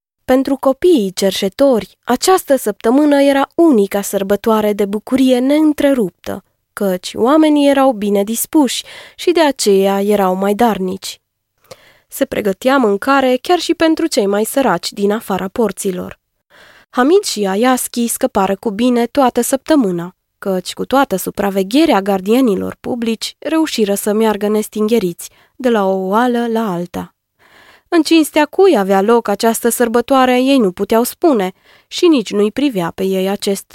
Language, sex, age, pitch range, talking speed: Romanian, female, 20-39, 195-270 Hz, 135 wpm